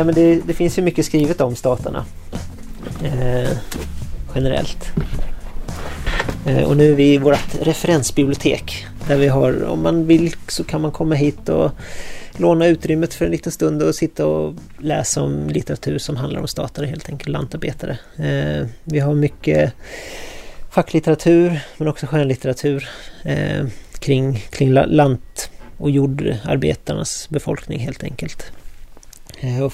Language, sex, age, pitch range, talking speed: Swedish, male, 30-49, 125-150 Hz, 140 wpm